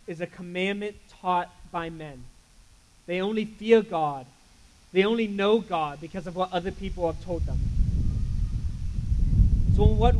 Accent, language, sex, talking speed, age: American, English, male, 145 wpm, 20-39